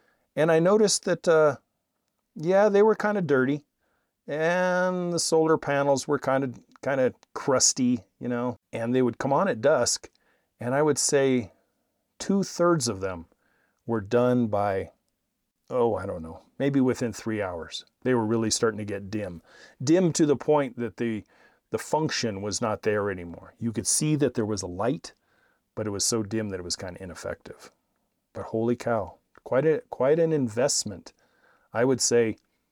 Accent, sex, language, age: American, male, English, 40-59